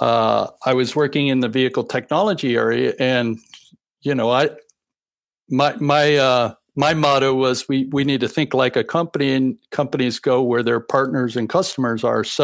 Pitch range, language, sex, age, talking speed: 130-170 Hz, English, male, 60-79, 180 wpm